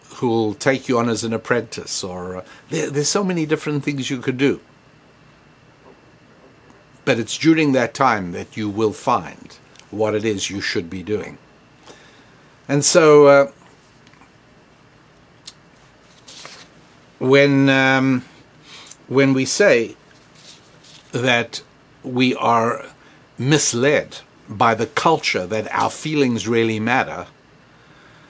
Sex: male